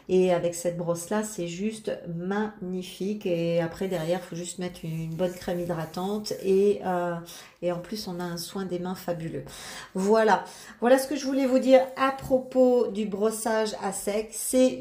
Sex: female